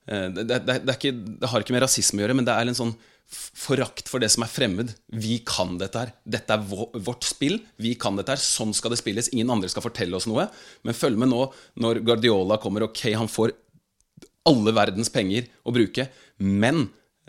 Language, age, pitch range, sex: English, 30-49, 115-140 Hz, male